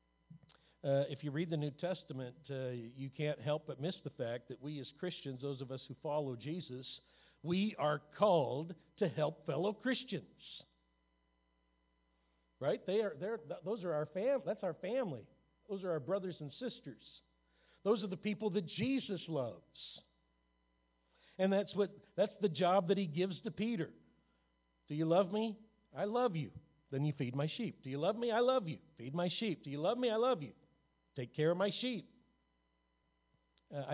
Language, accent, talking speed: English, American, 180 wpm